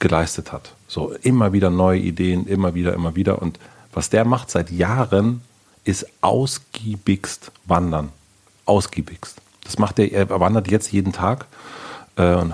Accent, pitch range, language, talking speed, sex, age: German, 85-100 Hz, German, 145 wpm, male, 40-59